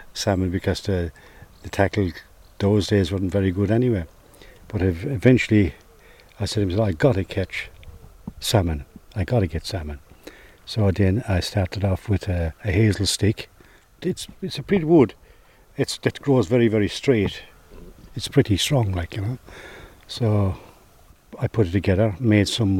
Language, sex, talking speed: English, male, 160 wpm